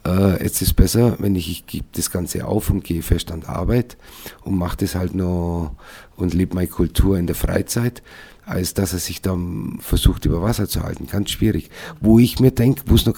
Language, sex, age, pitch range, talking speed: German, male, 50-69, 85-110 Hz, 215 wpm